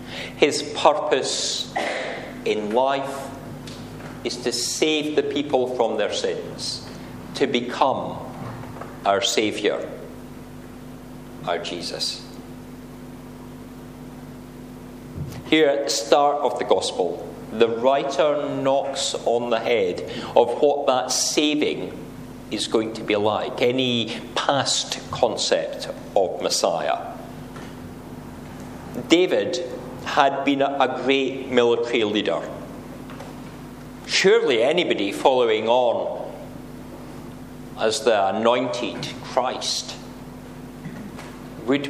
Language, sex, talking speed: English, male, 85 wpm